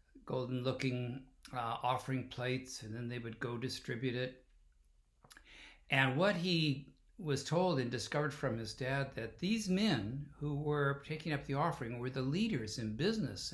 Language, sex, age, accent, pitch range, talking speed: English, male, 60-79, American, 115-155 Hz, 160 wpm